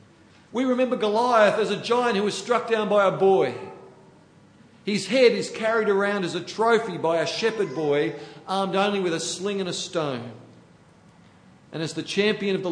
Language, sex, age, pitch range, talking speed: English, male, 50-69, 145-195 Hz, 185 wpm